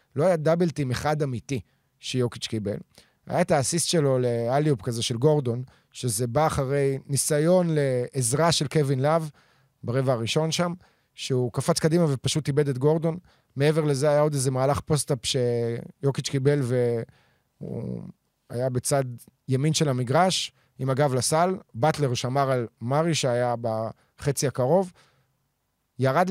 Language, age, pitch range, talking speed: Hebrew, 30-49, 125-155 Hz, 135 wpm